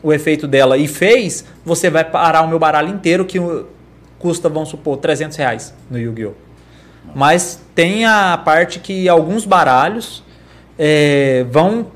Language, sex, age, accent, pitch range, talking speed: Portuguese, male, 20-39, Brazilian, 140-185 Hz, 140 wpm